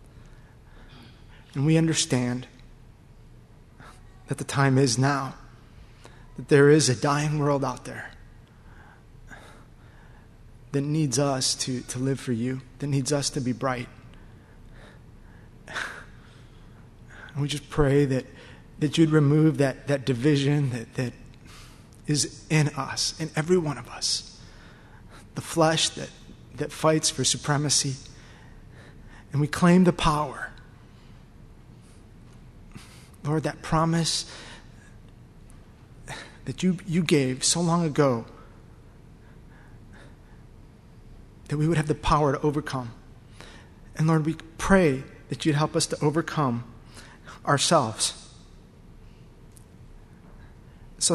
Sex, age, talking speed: male, 30-49, 110 wpm